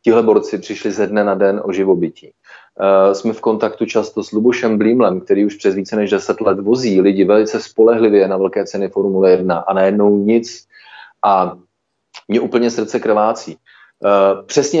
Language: Slovak